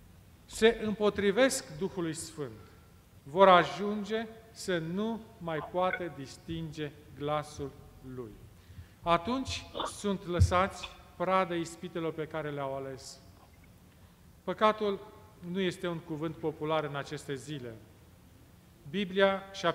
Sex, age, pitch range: male, 40-59, 145-200 Hz